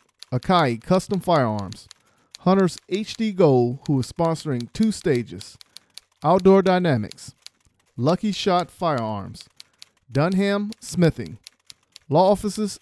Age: 50-69